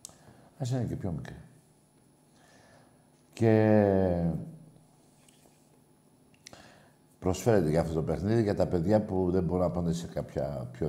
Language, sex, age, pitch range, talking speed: Greek, male, 60-79, 85-120 Hz, 120 wpm